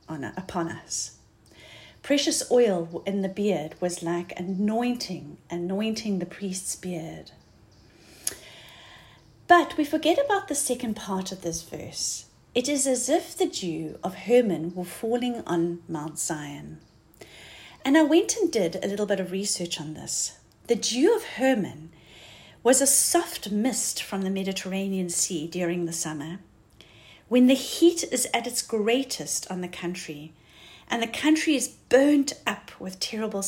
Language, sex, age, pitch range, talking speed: English, female, 40-59, 170-250 Hz, 145 wpm